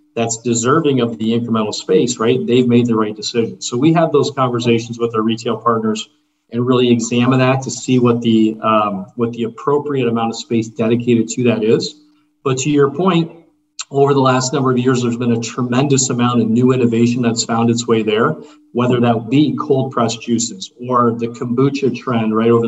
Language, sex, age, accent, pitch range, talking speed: English, male, 40-59, American, 115-135 Hz, 195 wpm